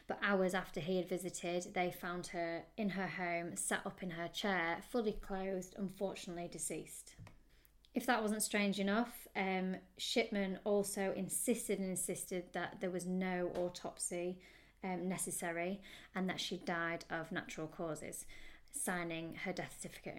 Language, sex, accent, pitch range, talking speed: English, female, British, 180-200 Hz, 145 wpm